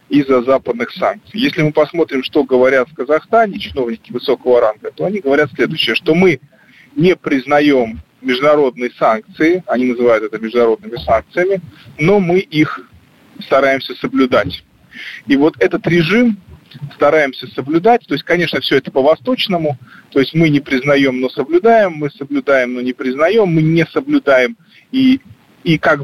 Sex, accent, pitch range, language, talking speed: male, native, 130-170 Hz, Russian, 145 wpm